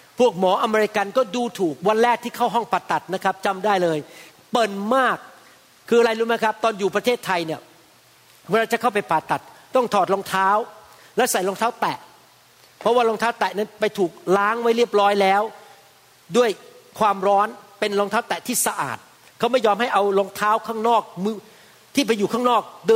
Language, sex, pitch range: Thai, male, 200-245 Hz